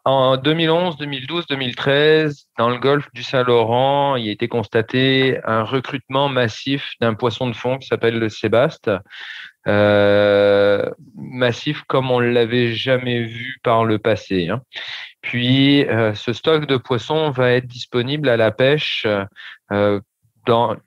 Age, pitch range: 40-59, 105-130 Hz